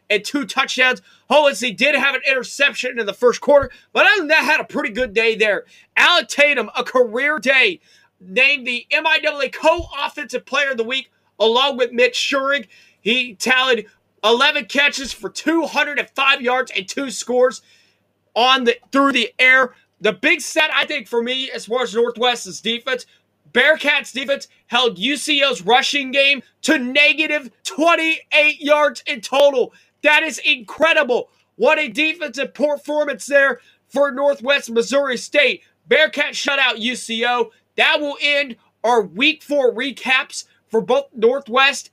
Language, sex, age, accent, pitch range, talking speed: English, male, 30-49, American, 235-290 Hz, 145 wpm